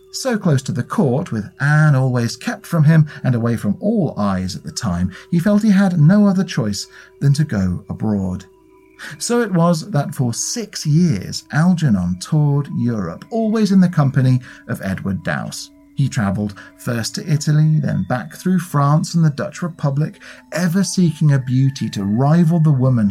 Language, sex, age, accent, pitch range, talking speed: English, male, 40-59, British, 115-180 Hz, 175 wpm